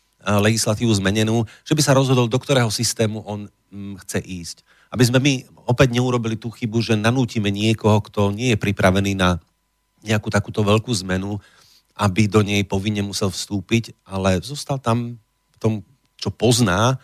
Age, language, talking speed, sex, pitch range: 40-59, Slovak, 155 wpm, male, 100-115 Hz